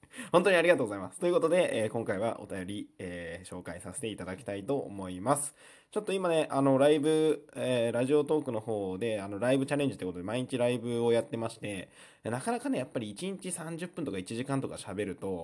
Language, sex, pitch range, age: Japanese, male, 95-145 Hz, 20-39